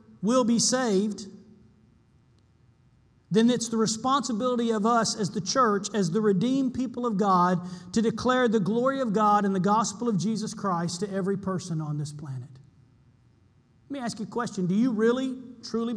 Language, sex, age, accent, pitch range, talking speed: English, male, 40-59, American, 180-225 Hz, 175 wpm